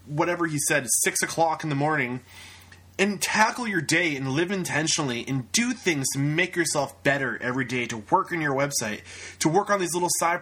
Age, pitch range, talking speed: 20-39, 130-180 Hz, 200 wpm